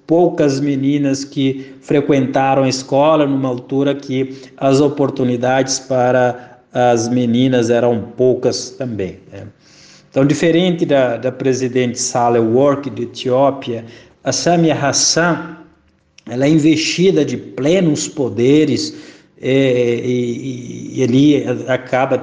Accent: Brazilian